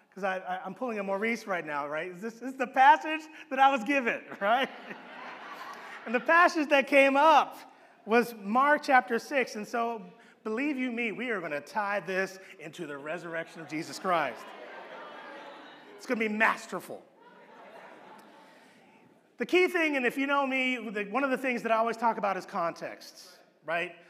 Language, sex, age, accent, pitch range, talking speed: English, male, 30-49, American, 200-270 Hz, 170 wpm